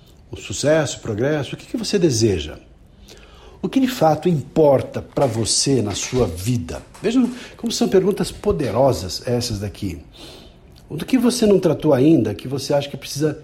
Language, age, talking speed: Portuguese, 60-79, 170 wpm